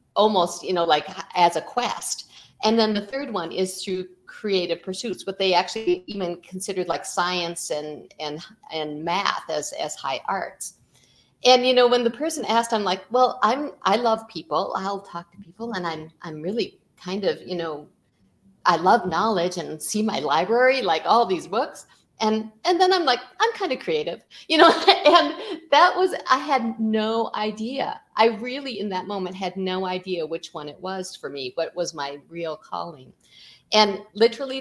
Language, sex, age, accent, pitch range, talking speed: English, female, 50-69, American, 175-225 Hz, 185 wpm